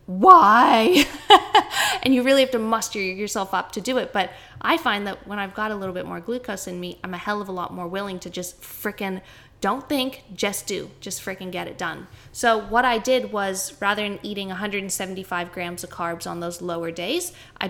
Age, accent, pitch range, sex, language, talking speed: 10-29, American, 185-220 Hz, female, English, 215 wpm